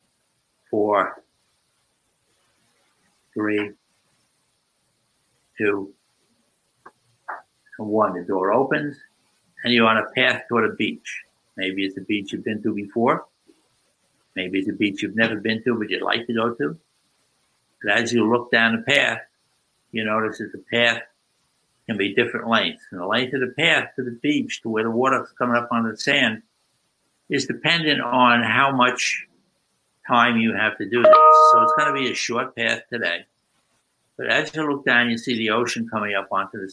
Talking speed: 165 wpm